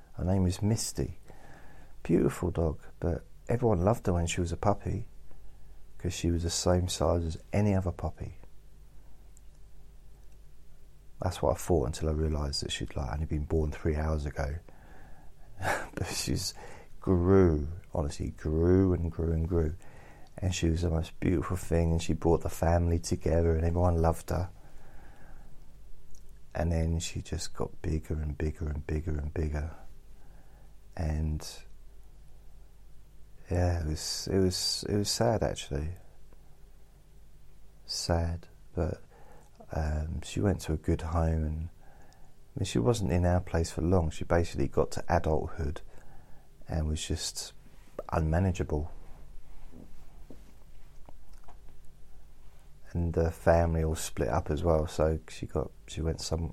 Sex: male